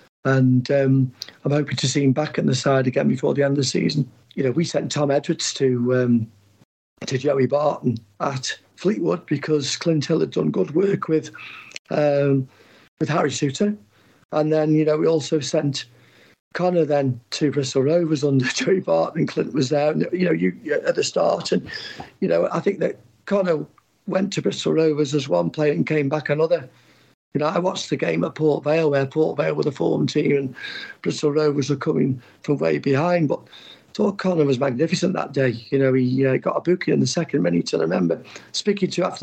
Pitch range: 135-170 Hz